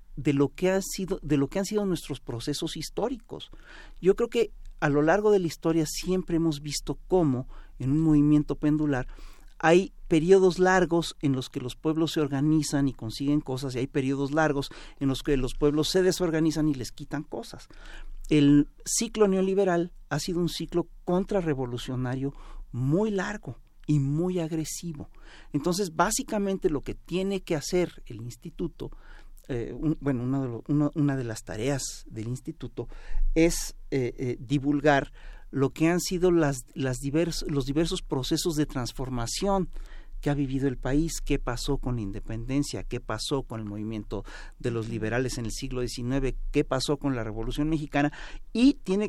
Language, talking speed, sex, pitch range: Spanish, 155 wpm, male, 130-170 Hz